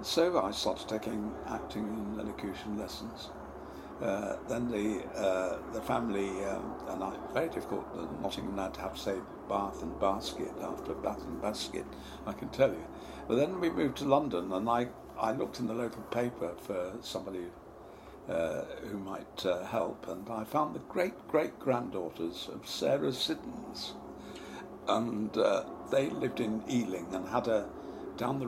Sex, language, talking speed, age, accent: male, English, 160 wpm, 60-79, British